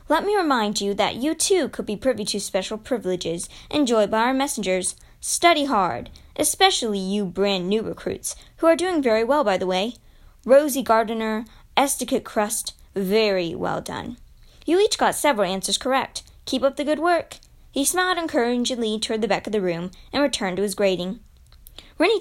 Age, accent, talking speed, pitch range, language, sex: 20-39, American, 175 wpm, 195-275 Hz, English, female